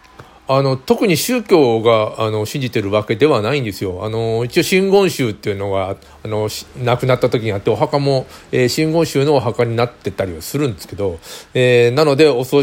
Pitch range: 110-150 Hz